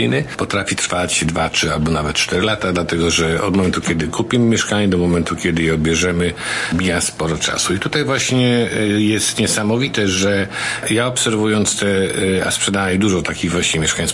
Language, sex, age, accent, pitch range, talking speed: Polish, male, 50-69, native, 90-105 Hz, 165 wpm